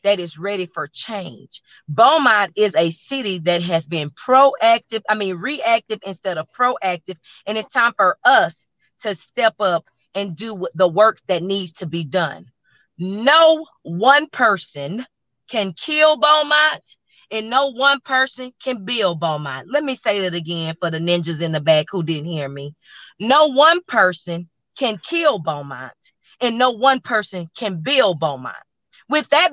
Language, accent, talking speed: English, American, 160 wpm